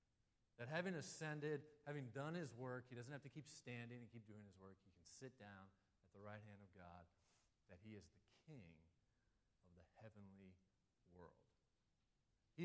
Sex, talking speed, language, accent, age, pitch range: male, 180 wpm, English, American, 40-59, 100-135 Hz